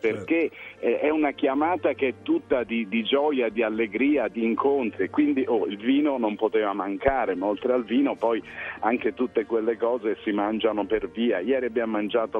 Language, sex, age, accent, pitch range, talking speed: Italian, male, 50-69, native, 115-155 Hz, 180 wpm